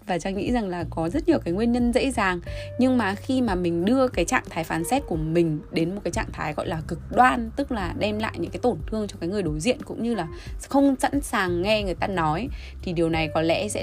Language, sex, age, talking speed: Vietnamese, female, 20-39, 280 wpm